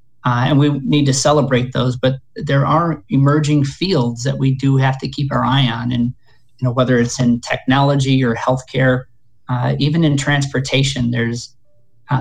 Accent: American